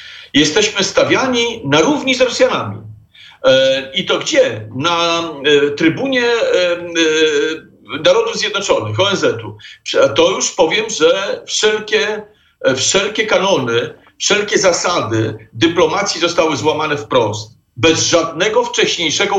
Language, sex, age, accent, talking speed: Polish, male, 50-69, native, 95 wpm